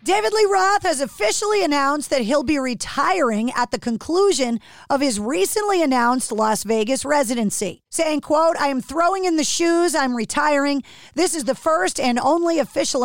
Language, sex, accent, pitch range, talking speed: English, female, American, 245-320 Hz, 170 wpm